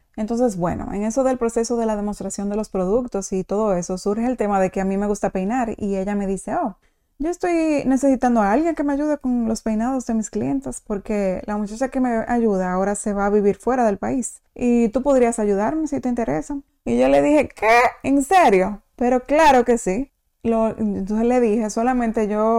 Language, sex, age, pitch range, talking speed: Spanish, female, 20-39, 195-245 Hz, 220 wpm